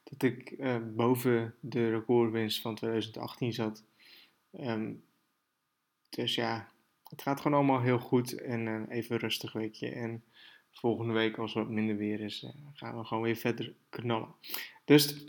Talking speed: 160 wpm